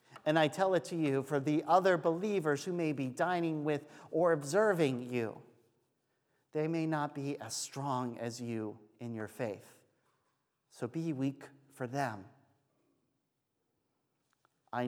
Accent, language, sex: American, English, male